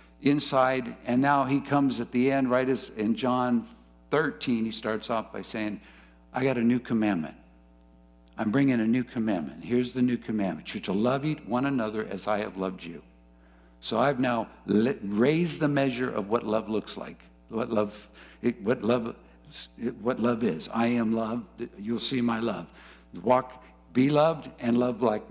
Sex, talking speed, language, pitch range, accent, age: male, 175 wpm, English, 105-170 Hz, American, 60-79